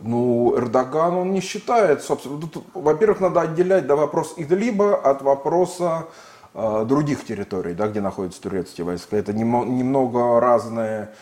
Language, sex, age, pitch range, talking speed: Russian, male, 20-39, 105-145 Hz, 120 wpm